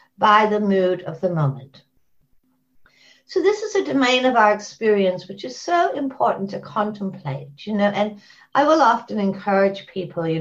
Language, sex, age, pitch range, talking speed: English, female, 60-79, 175-265 Hz, 165 wpm